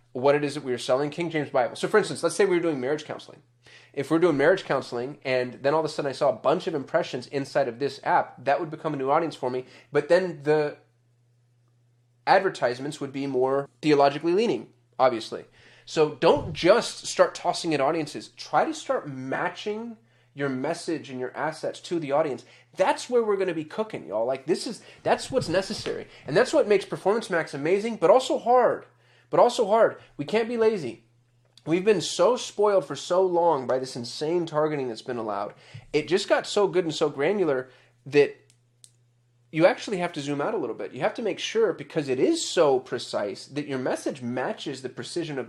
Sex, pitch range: male, 125-175 Hz